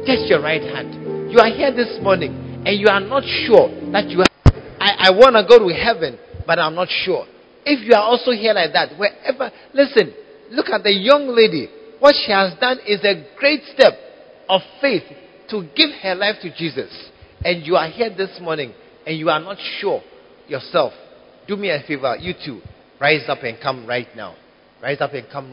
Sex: male